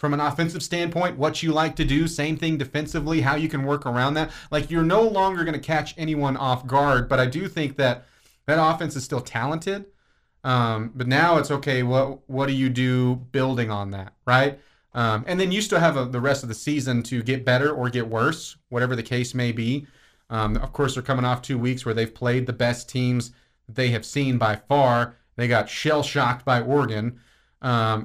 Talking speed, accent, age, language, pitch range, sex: 220 wpm, American, 30-49, English, 120-145 Hz, male